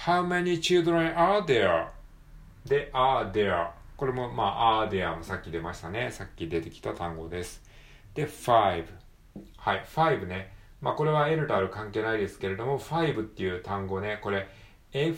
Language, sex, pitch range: Japanese, male, 90-130 Hz